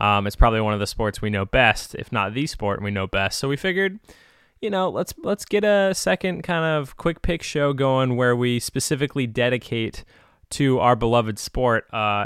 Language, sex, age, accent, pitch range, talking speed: English, male, 20-39, American, 105-125 Hz, 205 wpm